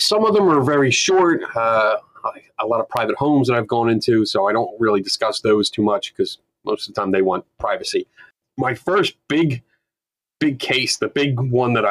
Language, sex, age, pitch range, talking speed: English, male, 30-49, 105-145 Hz, 205 wpm